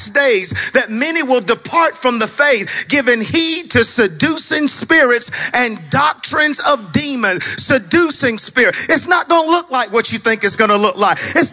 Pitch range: 225-295 Hz